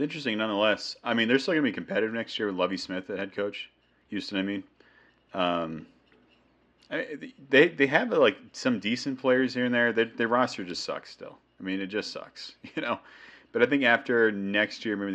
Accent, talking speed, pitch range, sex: American, 205 wpm, 85-115 Hz, male